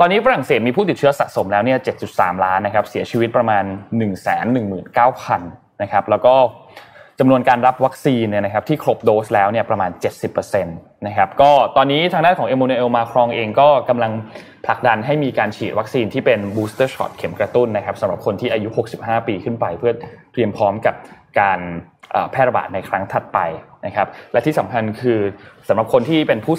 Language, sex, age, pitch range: Thai, male, 20-39, 105-145 Hz